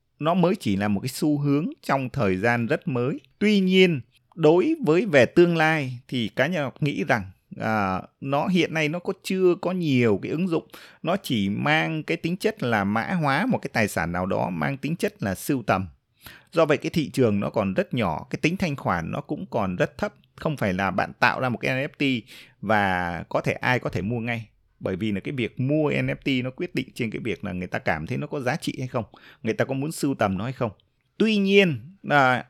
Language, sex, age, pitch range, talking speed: Vietnamese, male, 20-39, 110-155 Hz, 240 wpm